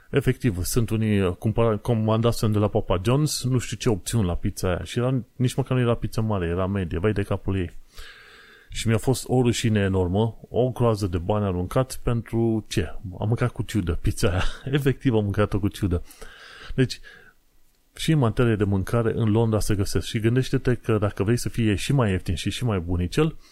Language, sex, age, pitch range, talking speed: Romanian, male, 30-49, 95-120 Hz, 200 wpm